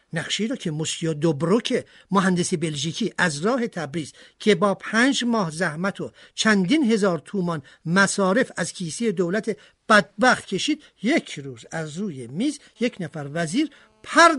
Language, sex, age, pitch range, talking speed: Persian, male, 50-69, 175-265 Hz, 140 wpm